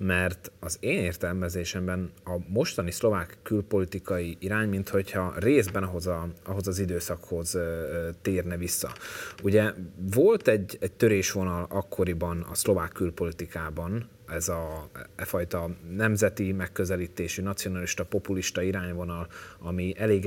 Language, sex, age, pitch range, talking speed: Hungarian, male, 30-49, 90-100 Hz, 110 wpm